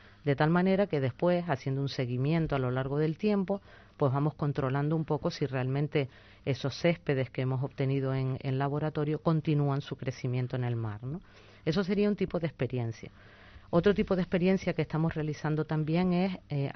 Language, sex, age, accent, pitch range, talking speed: Spanish, female, 40-59, American, 130-155 Hz, 185 wpm